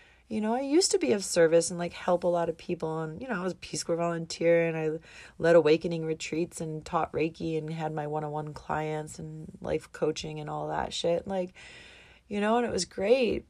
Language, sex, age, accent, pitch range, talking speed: English, female, 30-49, American, 160-205 Hz, 235 wpm